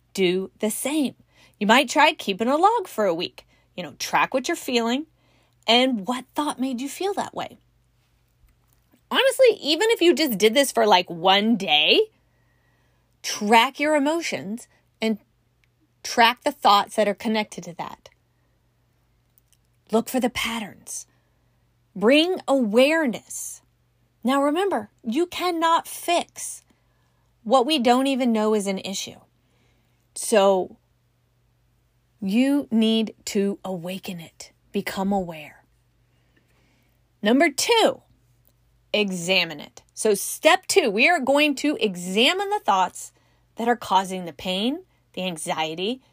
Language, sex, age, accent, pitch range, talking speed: English, female, 30-49, American, 195-295 Hz, 125 wpm